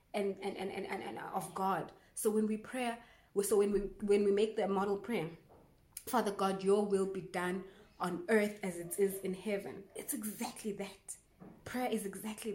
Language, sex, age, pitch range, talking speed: English, female, 20-39, 185-220 Hz, 185 wpm